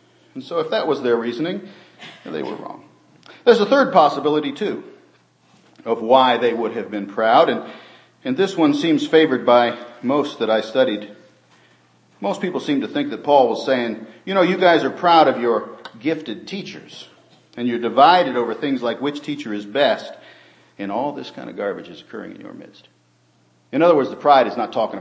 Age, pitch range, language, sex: 50-69, 105-155 Hz, English, male